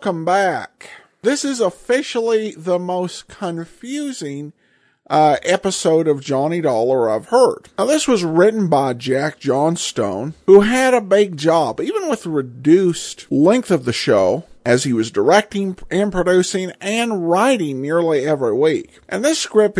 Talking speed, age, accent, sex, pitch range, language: 145 wpm, 50-69, American, male, 150-220 Hz, English